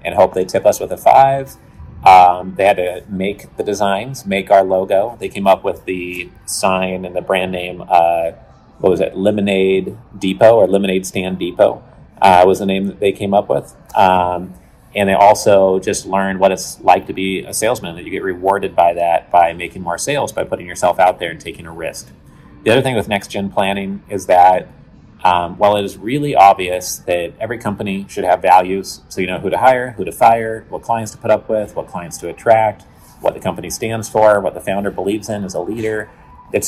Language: English